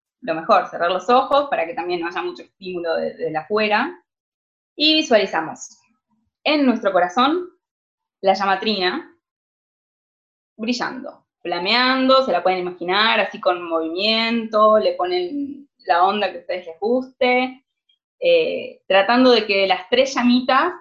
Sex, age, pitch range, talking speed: female, 20-39, 185-270 Hz, 135 wpm